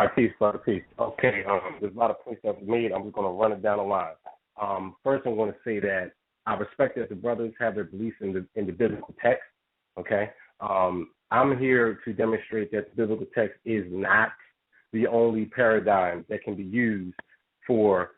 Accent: American